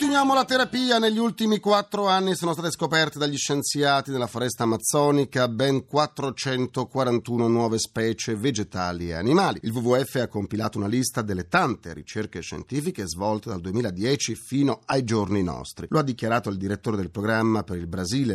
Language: Italian